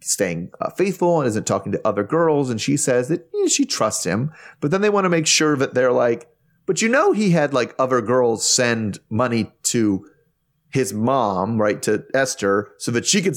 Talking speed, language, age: 205 wpm, English, 30-49